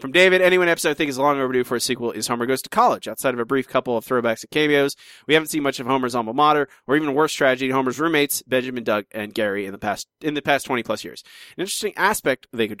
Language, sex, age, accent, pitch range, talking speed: English, male, 30-49, American, 115-140 Hz, 270 wpm